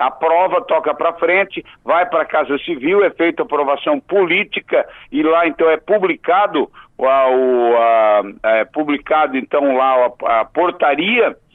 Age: 60-79